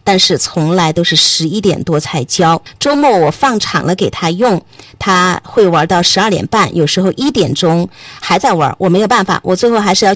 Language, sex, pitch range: Chinese, female, 175-255 Hz